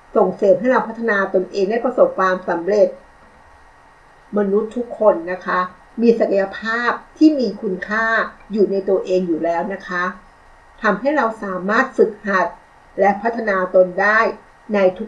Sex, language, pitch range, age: female, Thai, 185-235 Hz, 60-79